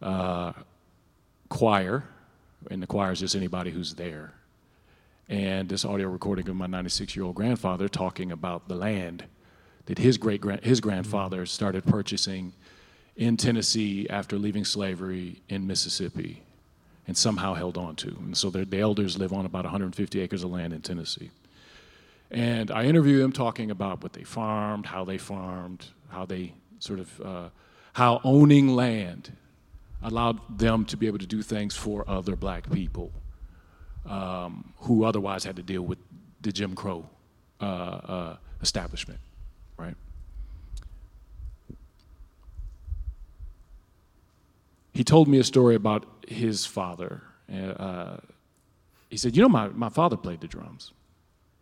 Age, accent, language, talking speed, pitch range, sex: 40-59, American, English, 140 wpm, 90-110 Hz, male